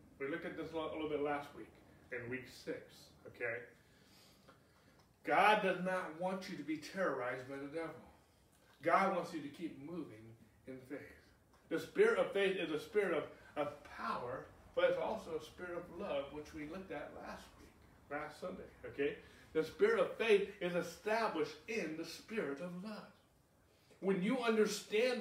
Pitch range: 145-220 Hz